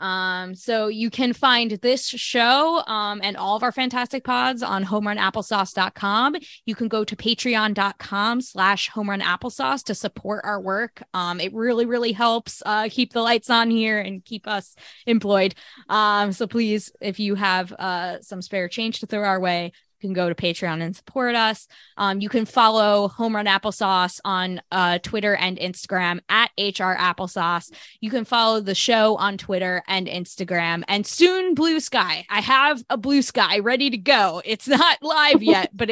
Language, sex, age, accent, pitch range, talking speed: English, female, 20-39, American, 190-240 Hz, 170 wpm